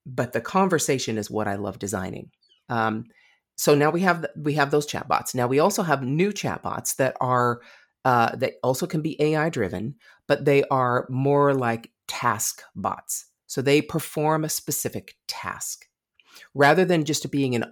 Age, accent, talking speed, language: 40-59, American, 175 wpm, English